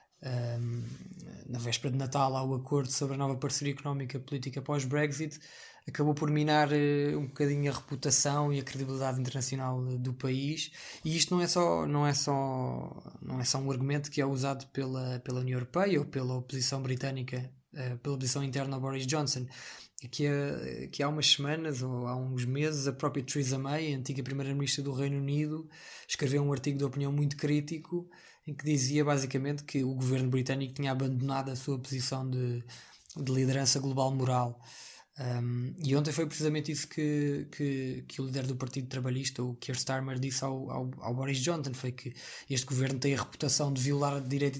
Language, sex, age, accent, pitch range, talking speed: Portuguese, male, 20-39, Portuguese, 130-145 Hz, 185 wpm